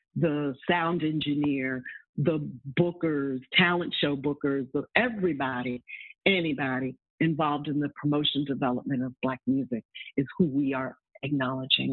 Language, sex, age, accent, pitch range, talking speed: English, female, 50-69, American, 135-165 Hz, 115 wpm